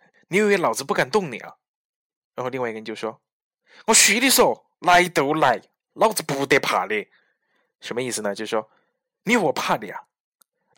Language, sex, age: Chinese, male, 20-39